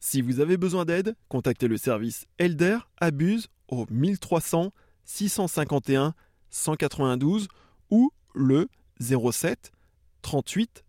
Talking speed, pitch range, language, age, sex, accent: 100 wpm, 125-180 Hz, English, 20-39, male, French